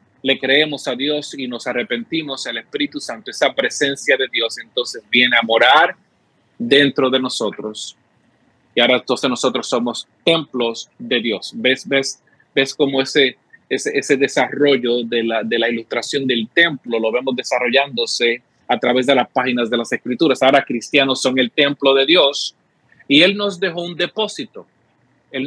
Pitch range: 130-175 Hz